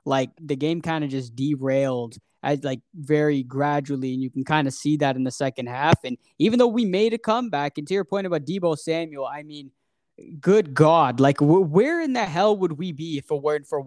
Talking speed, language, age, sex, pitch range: 230 wpm, English, 20-39, male, 145-175 Hz